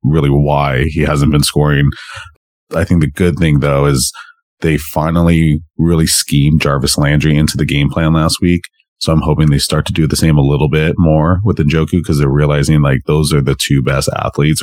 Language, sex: English, male